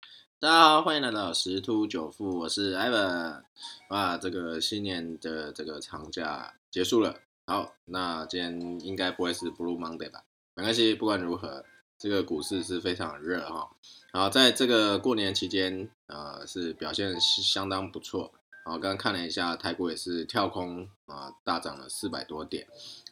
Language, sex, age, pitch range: Chinese, male, 20-39, 85-105 Hz